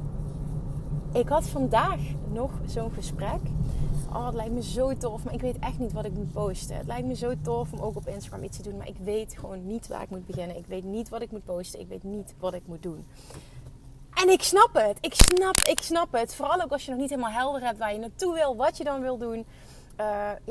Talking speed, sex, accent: 245 wpm, female, Dutch